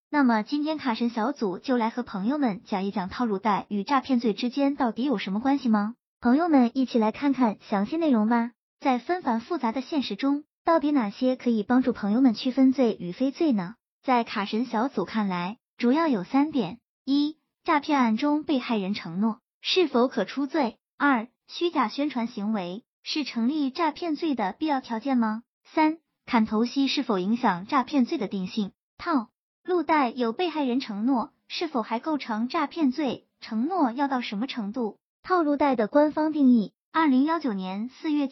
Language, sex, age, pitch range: Chinese, male, 20-39, 220-290 Hz